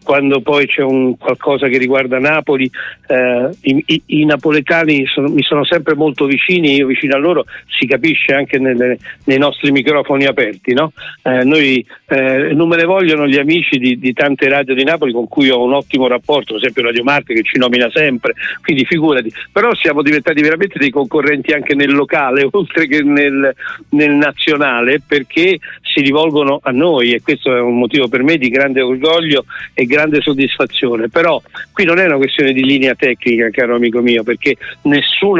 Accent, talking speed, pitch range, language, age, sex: native, 185 wpm, 130-155 Hz, Italian, 50-69, male